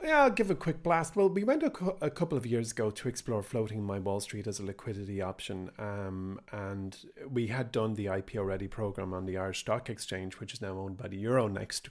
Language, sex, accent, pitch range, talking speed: English, male, Irish, 100-125 Hz, 225 wpm